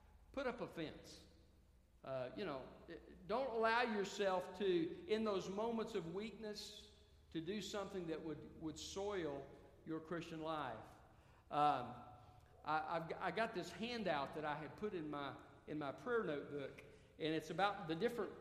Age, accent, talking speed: 50-69, American, 160 wpm